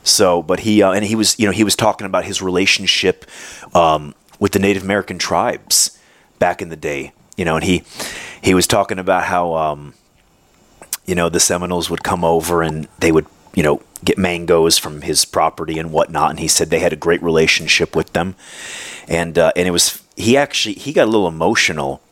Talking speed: 205 wpm